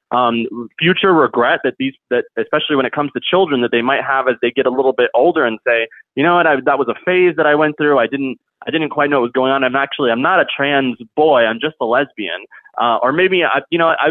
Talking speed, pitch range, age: 295 wpm, 140-195 Hz, 20-39